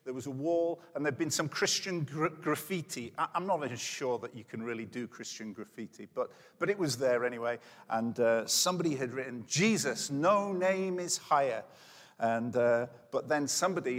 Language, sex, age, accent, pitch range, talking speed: English, male, 50-69, British, 120-155 Hz, 190 wpm